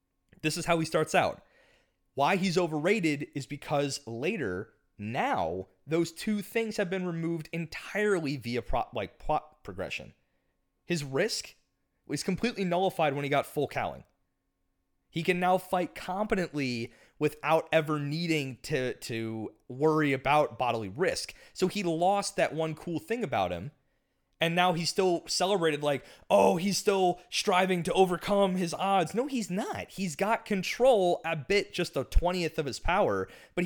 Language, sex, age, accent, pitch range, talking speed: English, male, 30-49, American, 140-185 Hz, 155 wpm